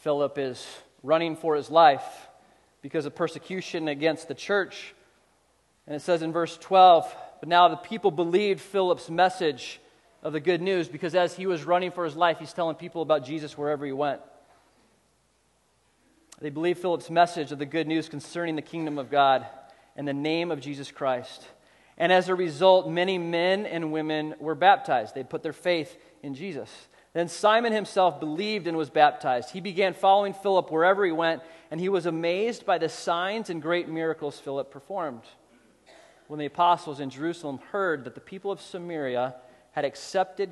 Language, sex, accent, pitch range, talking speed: English, male, American, 145-180 Hz, 175 wpm